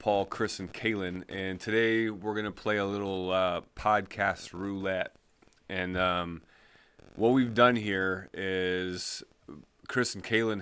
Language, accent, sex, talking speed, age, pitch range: English, American, male, 140 wpm, 30-49, 85-100 Hz